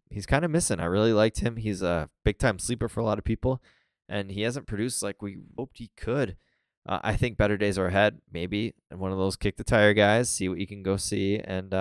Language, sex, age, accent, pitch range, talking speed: English, male, 20-39, American, 90-110 Hz, 255 wpm